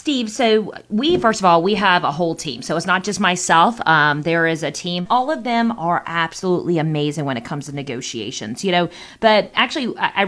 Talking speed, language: 220 wpm, English